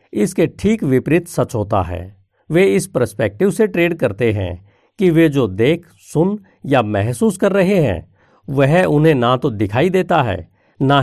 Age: 50-69